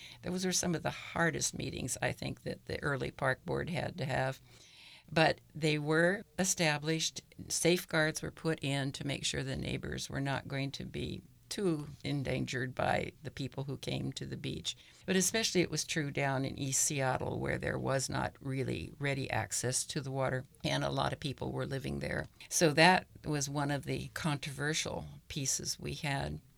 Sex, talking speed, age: female, 185 wpm, 60-79